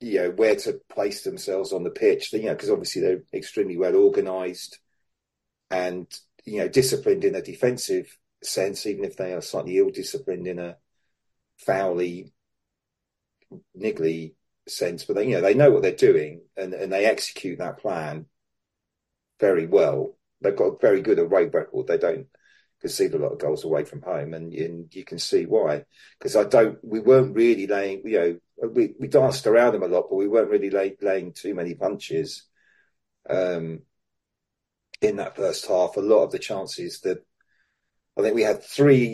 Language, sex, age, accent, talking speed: English, male, 40-59, British, 180 wpm